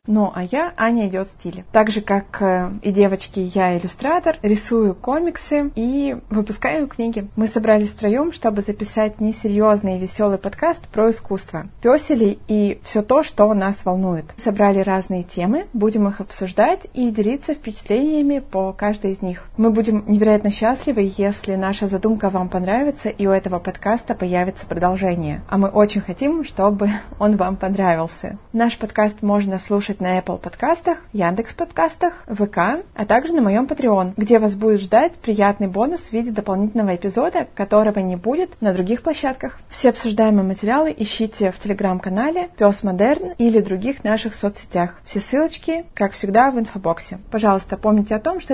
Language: Russian